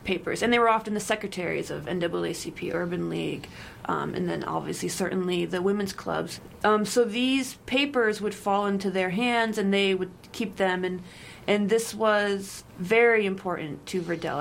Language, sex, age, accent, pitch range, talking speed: English, female, 30-49, American, 185-215 Hz, 170 wpm